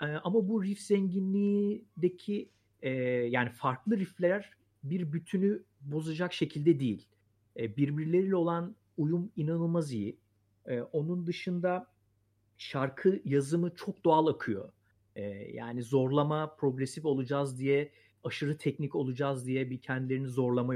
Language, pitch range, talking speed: Turkish, 120-155 Hz, 115 wpm